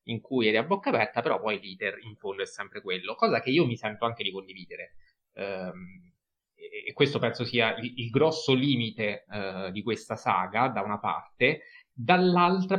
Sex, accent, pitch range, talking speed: male, native, 115-155 Hz, 170 wpm